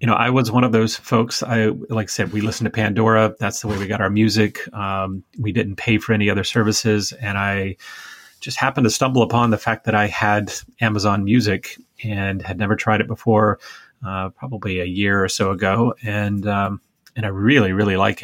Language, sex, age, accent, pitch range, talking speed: English, male, 30-49, American, 100-115 Hz, 215 wpm